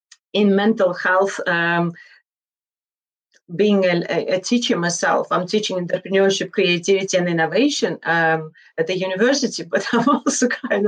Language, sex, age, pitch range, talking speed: English, female, 30-49, 185-230 Hz, 125 wpm